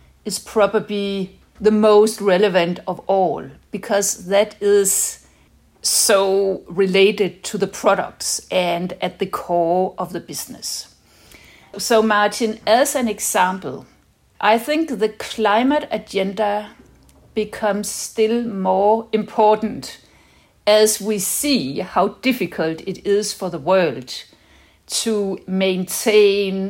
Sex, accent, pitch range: female, Danish, 180-215 Hz